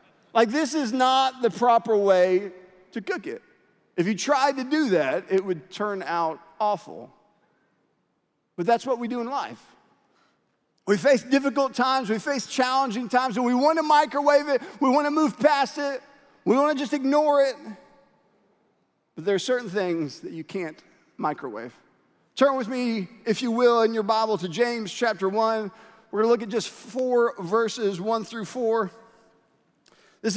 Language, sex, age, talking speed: English, male, 40-59, 175 wpm